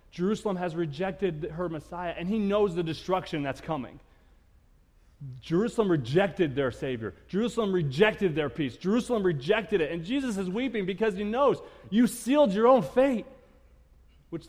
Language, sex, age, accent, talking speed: English, male, 30-49, American, 150 wpm